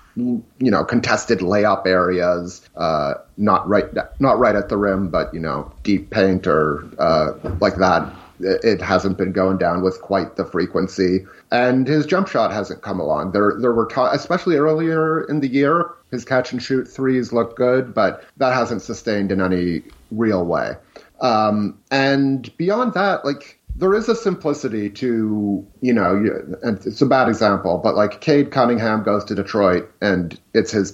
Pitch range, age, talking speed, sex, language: 95-130 Hz, 30-49, 175 wpm, male, English